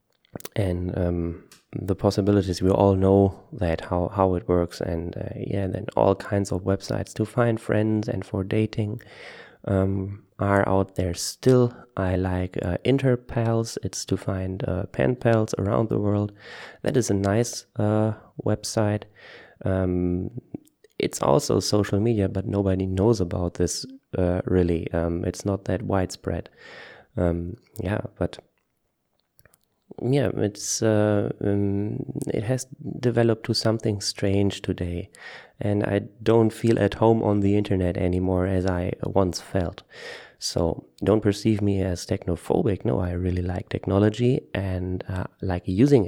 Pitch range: 95-110 Hz